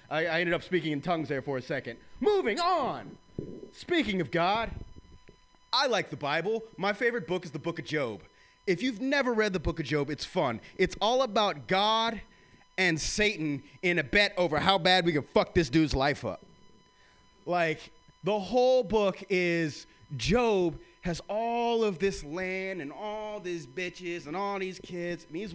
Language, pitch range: English, 170-230 Hz